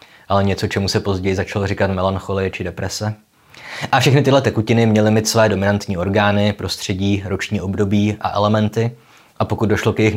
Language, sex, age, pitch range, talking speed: Czech, male, 20-39, 95-110 Hz, 170 wpm